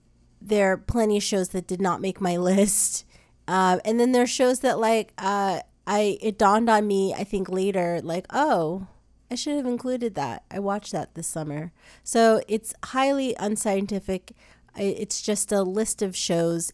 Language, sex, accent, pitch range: English, female, American, 190-230 Hz